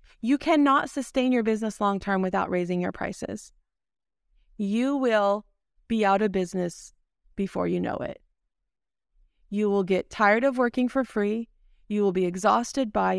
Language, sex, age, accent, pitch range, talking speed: English, female, 20-39, American, 195-230 Hz, 150 wpm